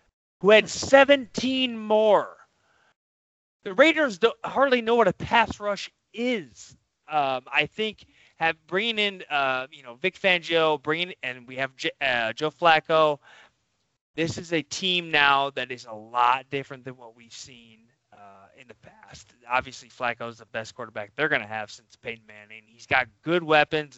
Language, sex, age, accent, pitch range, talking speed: English, male, 20-39, American, 120-170 Hz, 170 wpm